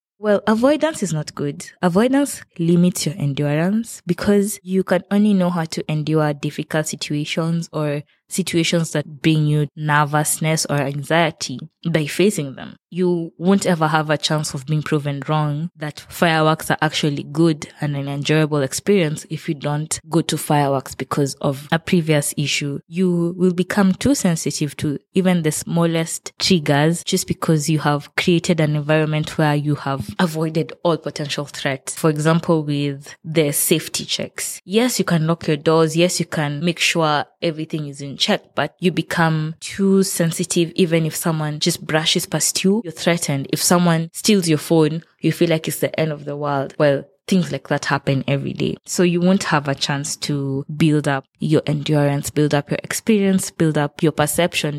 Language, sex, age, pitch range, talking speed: English, female, 20-39, 150-175 Hz, 175 wpm